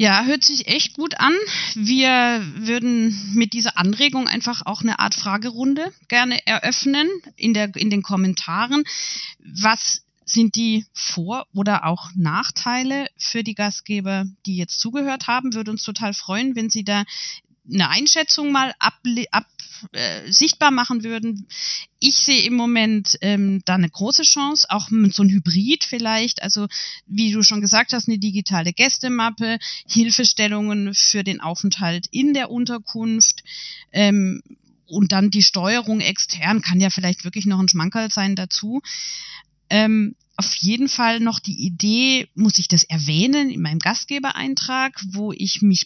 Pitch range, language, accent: 195-240 Hz, German, German